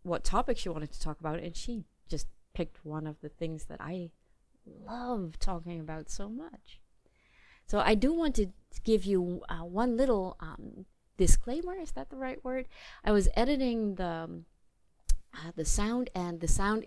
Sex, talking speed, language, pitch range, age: female, 180 wpm, English, 160-215 Hz, 30-49